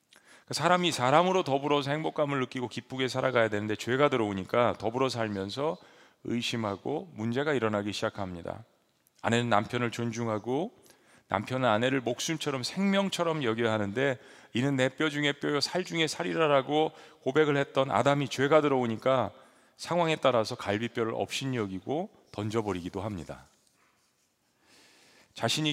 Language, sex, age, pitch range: Korean, male, 40-59, 110-150 Hz